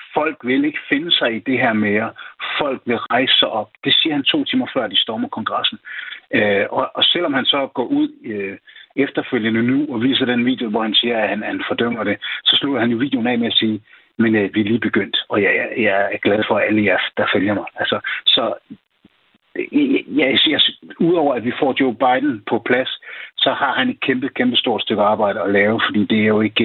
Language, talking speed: Danish, 230 wpm